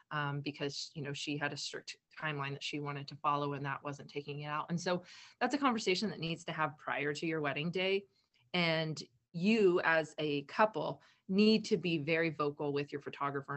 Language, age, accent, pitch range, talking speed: English, 30-49, American, 145-185 Hz, 210 wpm